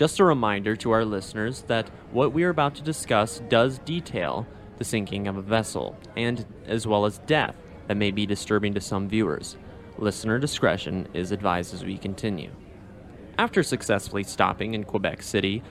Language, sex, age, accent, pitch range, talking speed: English, male, 20-39, American, 100-120 Hz, 170 wpm